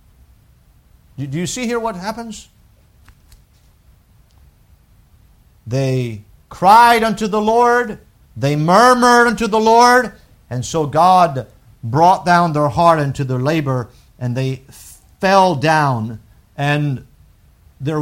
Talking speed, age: 105 wpm, 50-69